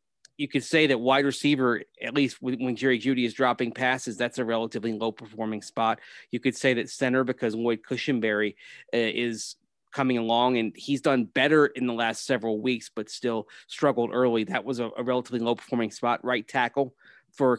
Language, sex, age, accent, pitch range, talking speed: English, male, 30-49, American, 115-135 Hz, 185 wpm